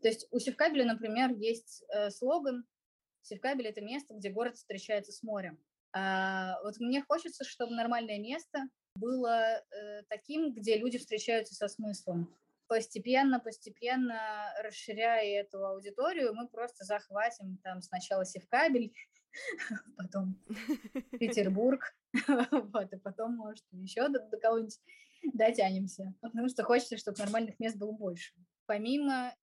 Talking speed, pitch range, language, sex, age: 120 wpm, 200-250 Hz, Russian, female, 20-39